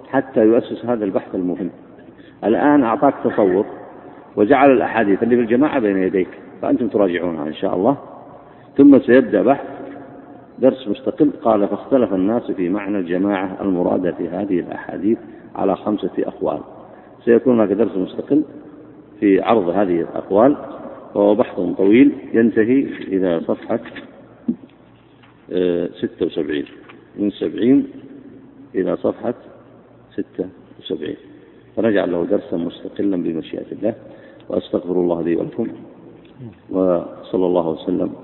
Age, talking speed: 50-69, 110 wpm